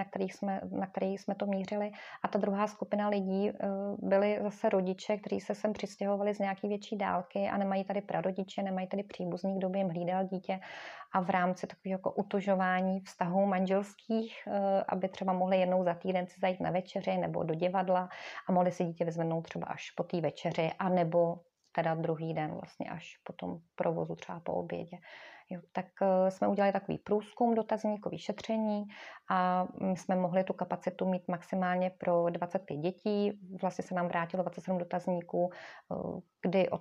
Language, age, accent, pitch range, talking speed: Czech, 30-49, native, 175-195 Hz, 170 wpm